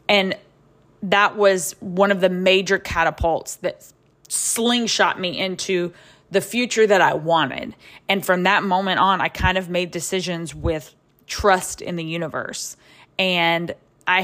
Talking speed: 145 wpm